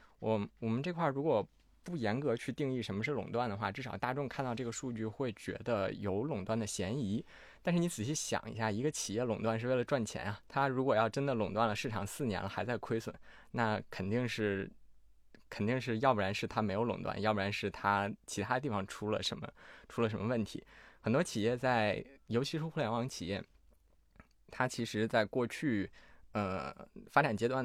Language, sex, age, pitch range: Chinese, male, 20-39, 105-125 Hz